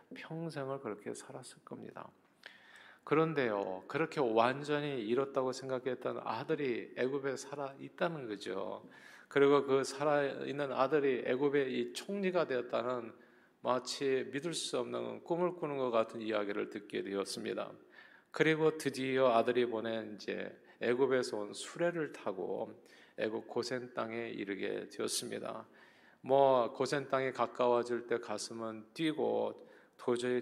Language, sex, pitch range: Korean, male, 110-140 Hz